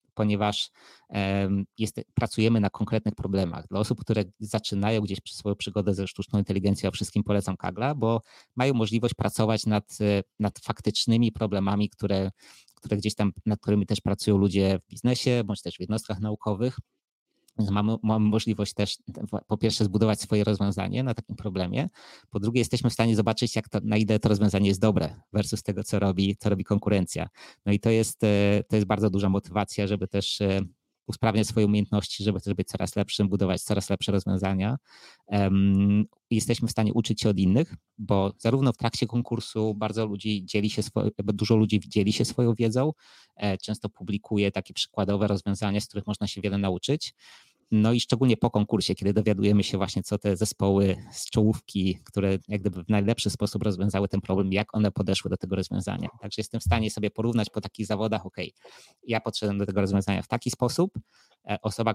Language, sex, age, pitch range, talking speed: Polish, male, 20-39, 100-110 Hz, 175 wpm